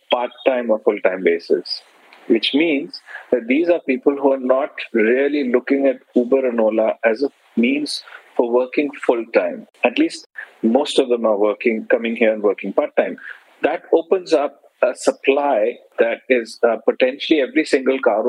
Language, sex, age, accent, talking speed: English, male, 40-59, Indian, 160 wpm